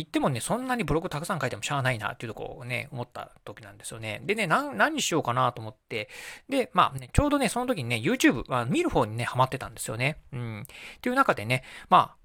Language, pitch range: Japanese, 120-165 Hz